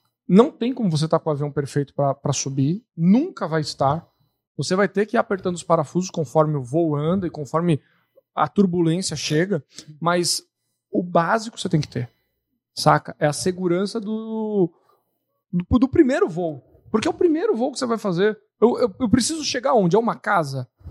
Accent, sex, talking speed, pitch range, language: Brazilian, male, 185 wpm, 155-220 Hz, Portuguese